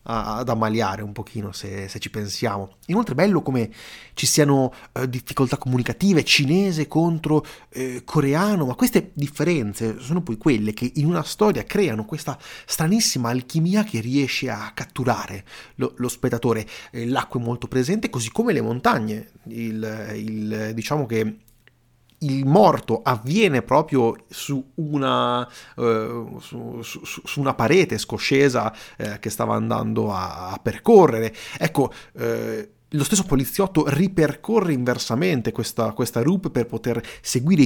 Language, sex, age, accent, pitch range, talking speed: Italian, male, 30-49, native, 110-145 Hz, 130 wpm